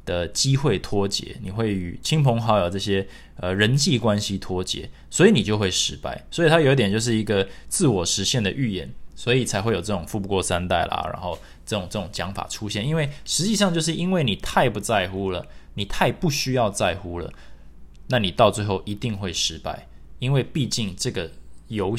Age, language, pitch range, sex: 20-39, Chinese, 95-125 Hz, male